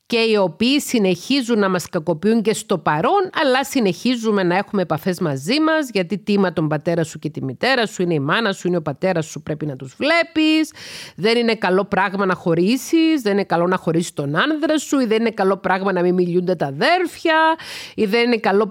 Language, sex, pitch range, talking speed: Greek, female, 185-260 Hz, 210 wpm